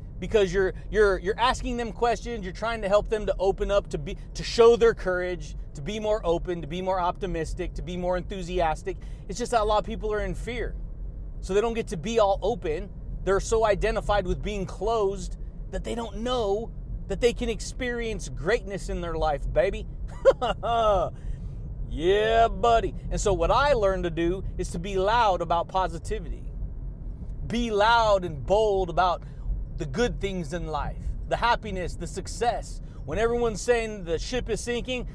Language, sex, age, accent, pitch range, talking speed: English, male, 30-49, American, 175-230 Hz, 180 wpm